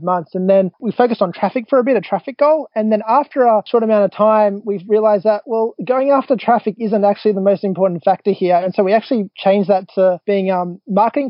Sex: male